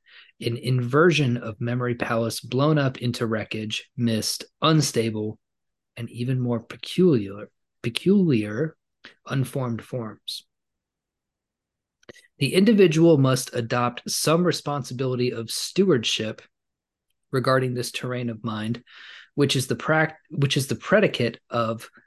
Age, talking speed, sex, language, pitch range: 20-39, 110 wpm, male, English, 115-135 Hz